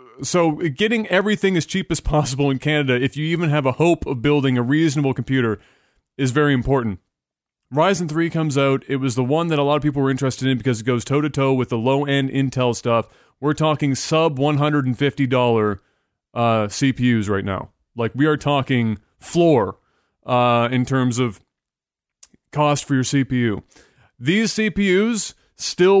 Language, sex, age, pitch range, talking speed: English, male, 30-49, 130-160 Hz, 175 wpm